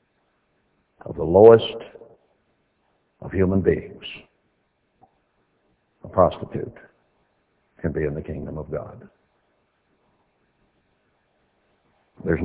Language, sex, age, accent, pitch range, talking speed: English, male, 60-79, American, 95-125 Hz, 75 wpm